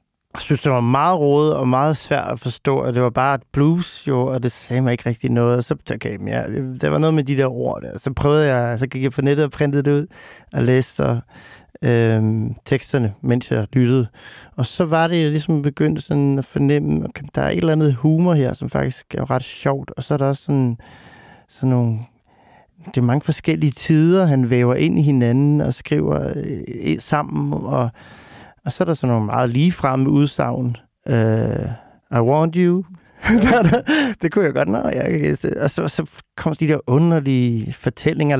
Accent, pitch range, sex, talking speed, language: native, 125-150 Hz, male, 205 wpm, Danish